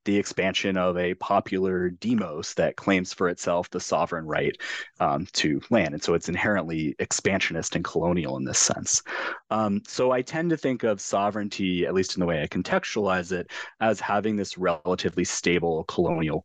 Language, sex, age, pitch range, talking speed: English, male, 30-49, 90-115 Hz, 175 wpm